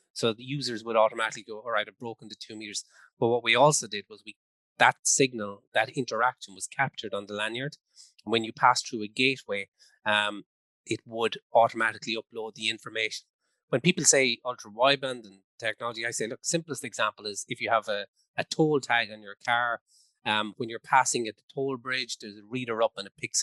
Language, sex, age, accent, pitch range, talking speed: English, male, 30-49, Irish, 110-135 Hz, 200 wpm